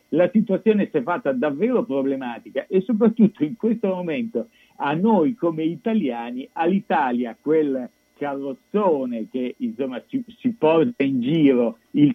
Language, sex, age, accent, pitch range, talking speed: Italian, male, 50-69, native, 135-185 Hz, 135 wpm